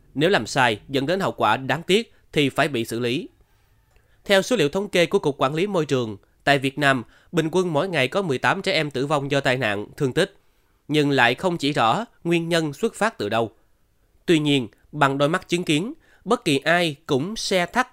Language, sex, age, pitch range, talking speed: Vietnamese, male, 20-39, 115-175 Hz, 225 wpm